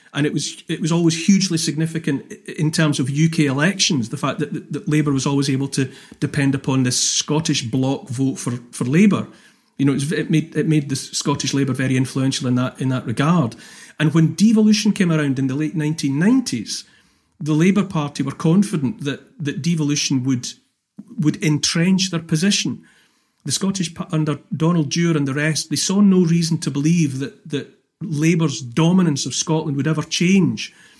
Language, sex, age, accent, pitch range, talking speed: English, male, 40-59, British, 140-165 Hz, 180 wpm